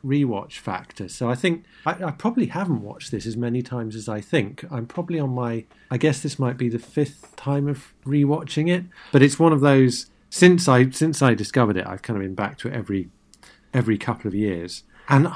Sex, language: male, English